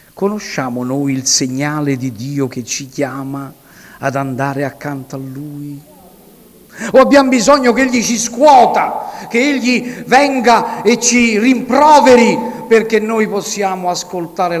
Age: 50-69